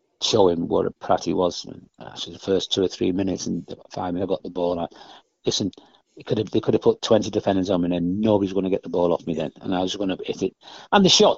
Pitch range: 95-115 Hz